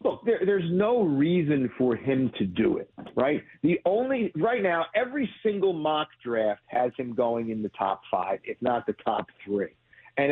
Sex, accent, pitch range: male, American, 125-200 Hz